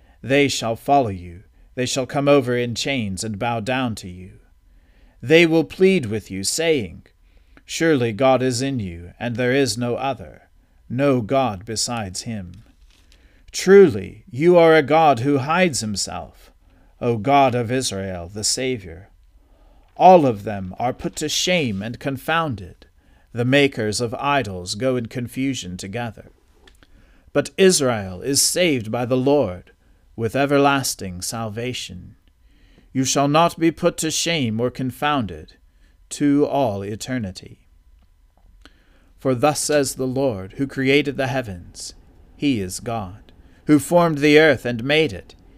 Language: English